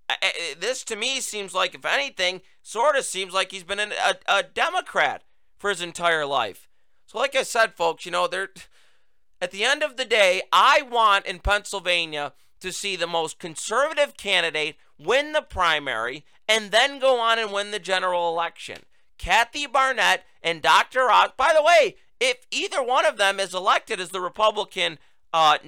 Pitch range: 180-265 Hz